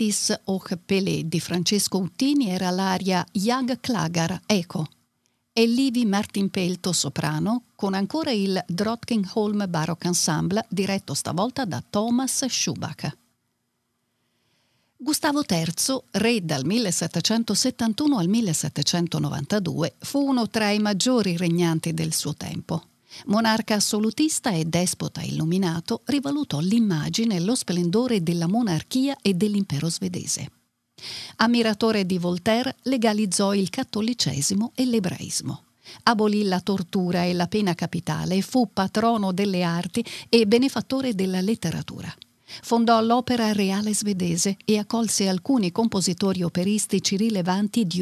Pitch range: 175-230 Hz